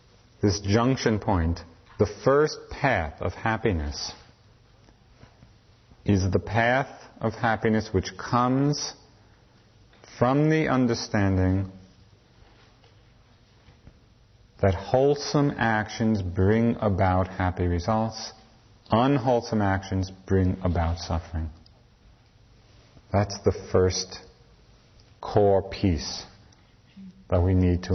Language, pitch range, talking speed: English, 95-120 Hz, 85 wpm